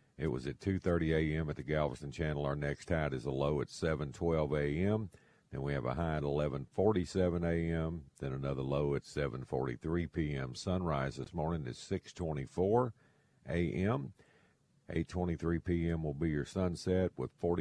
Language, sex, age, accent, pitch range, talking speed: English, male, 50-69, American, 70-85 Hz, 155 wpm